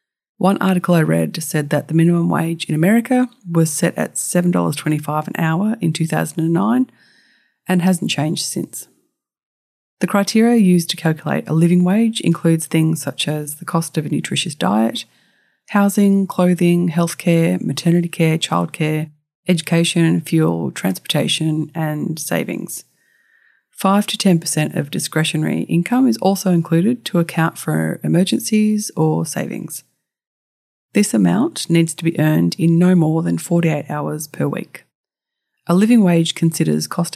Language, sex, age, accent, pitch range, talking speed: English, female, 30-49, Australian, 155-185 Hz, 135 wpm